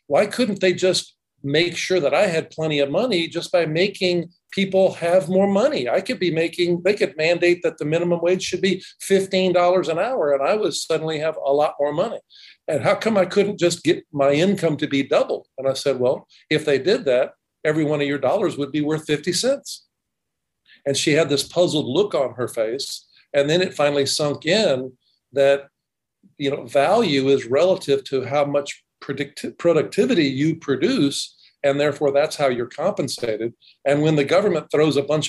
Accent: American